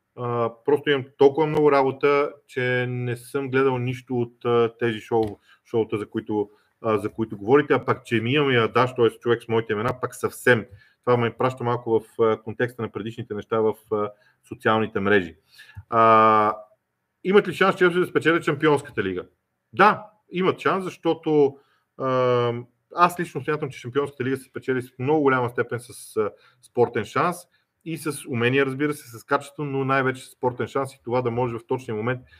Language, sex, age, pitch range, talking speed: Bulgarian, male, 40-59, 115-150 Hz, 170 wpm